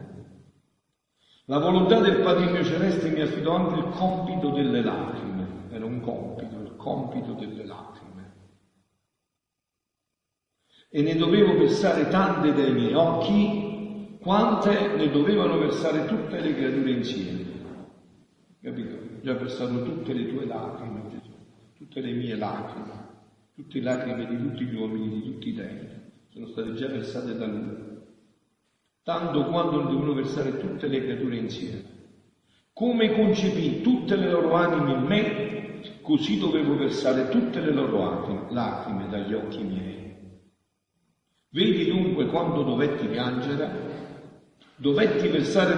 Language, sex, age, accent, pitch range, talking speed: Italian, male, 50-69, native, 115-185 Hz, 130 wpm